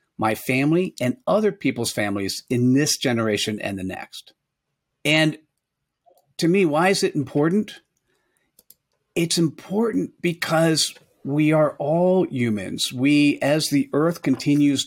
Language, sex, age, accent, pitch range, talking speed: English, male, 50-69, American, 120-150 Hz, 125 wpm